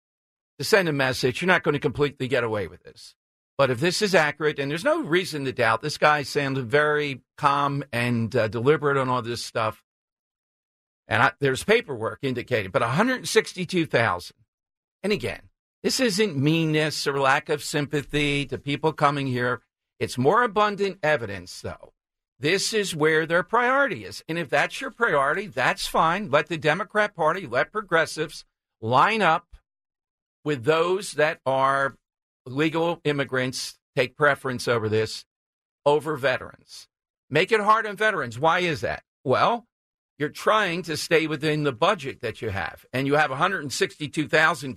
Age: 50-69